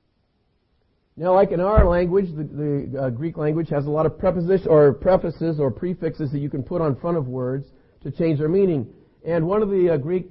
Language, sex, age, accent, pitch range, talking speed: English, male, 50-69, American, 140-180 Hz, 215 wpm